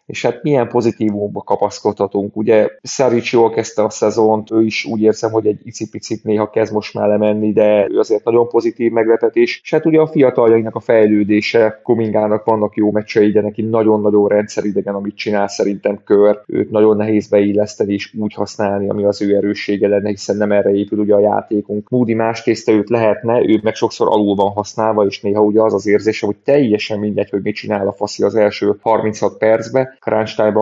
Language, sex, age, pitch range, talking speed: Hungarian, male, 30-49, 100-110 Hz, 190 wpm